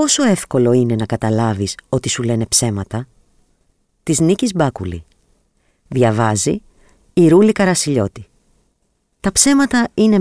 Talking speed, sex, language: 110 wpm, female, Greek